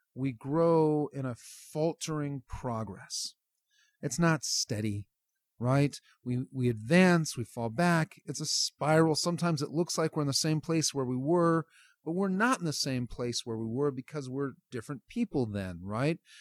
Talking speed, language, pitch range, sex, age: 170 wpm, English, 120-160 Hz, male, 40-59